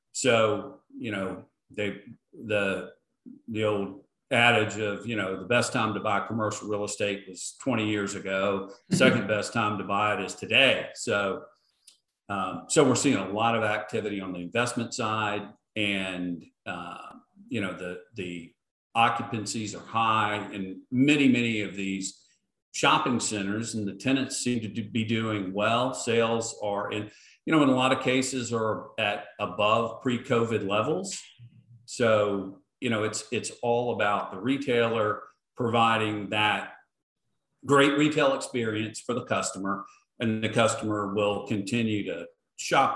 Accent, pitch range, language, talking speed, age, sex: American, 100-120 Hz, English, 150 wpm, 50-69, male